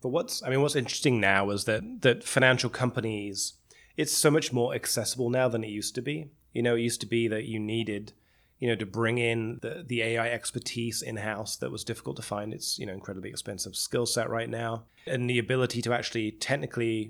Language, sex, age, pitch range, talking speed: English, male, 20-39, 110-125 Hz, 220 wpm